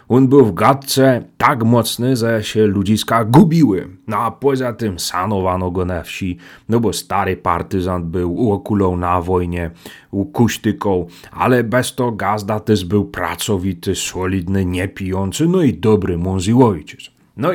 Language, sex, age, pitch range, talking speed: Polish, male, 30-49, 95-130 Hz, 145 wpm